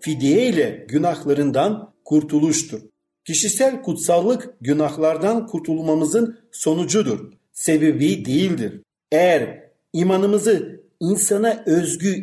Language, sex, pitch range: Turkish, male, 150-215 Hz